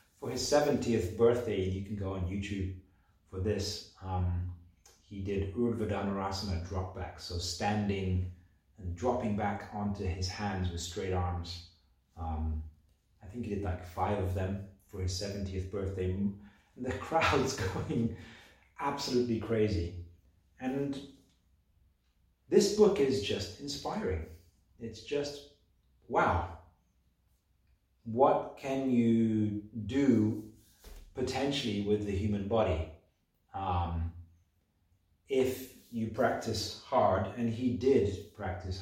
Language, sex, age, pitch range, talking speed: English, male, 30-49, 90-110 Hz, 115 wpm